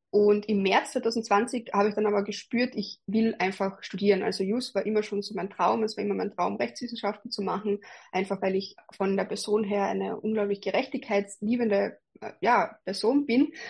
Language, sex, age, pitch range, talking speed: German, female, 20-39, 200-230 Hz, 180 wpm